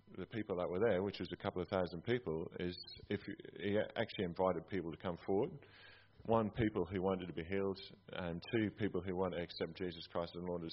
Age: 30-49